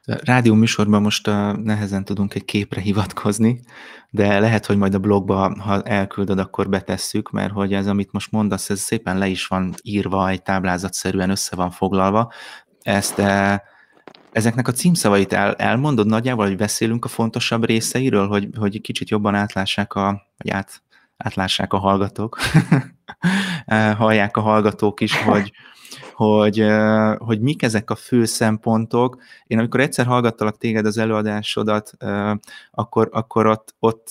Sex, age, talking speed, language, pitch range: male, 20-39, 145 wpm, Hungarian, 100-110 Hz